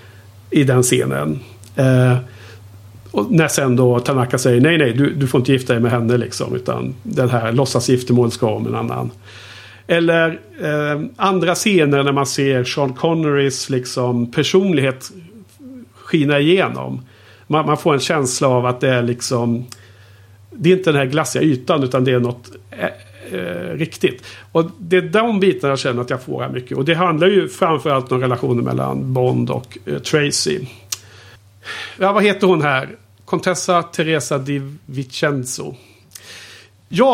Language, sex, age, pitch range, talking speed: Swedish, male, 50-69, 110-165 Hz, 160 wpm